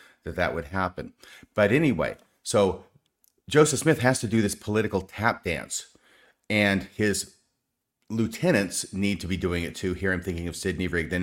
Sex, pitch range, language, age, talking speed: male, 90-105 Hz, English, 40-59, 165 wpm